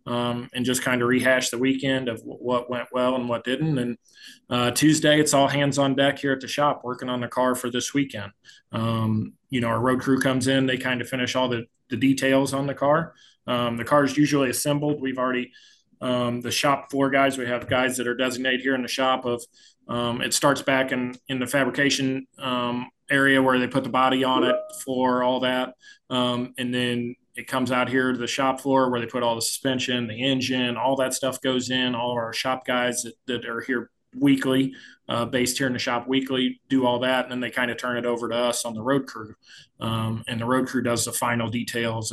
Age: 20-39